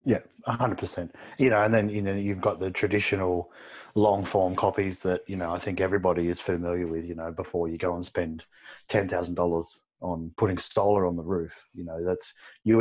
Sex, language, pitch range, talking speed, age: male, English, 85-100 Hz, 215 wpm, 30-49